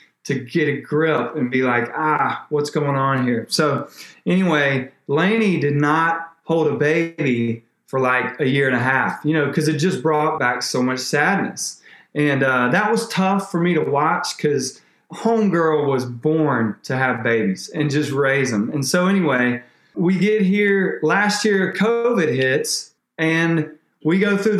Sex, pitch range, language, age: male, 140-180 Hz, English, 30-49